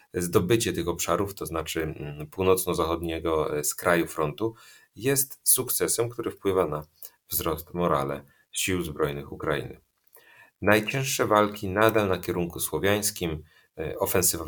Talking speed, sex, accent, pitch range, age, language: 105 wpm, male, native, 80-105 Hz, 40-59, Polish